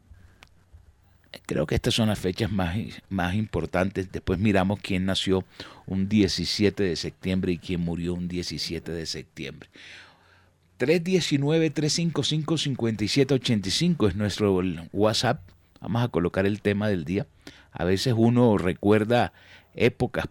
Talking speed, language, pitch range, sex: 120 wpm, Spanish, 90-115 Hz, male